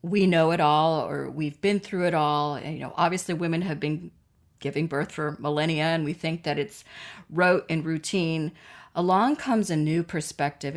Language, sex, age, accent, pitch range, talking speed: English, female, 40-59, American, 150-175 Hz, 190 wpm